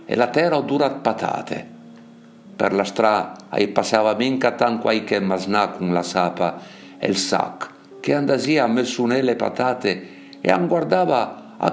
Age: 60-79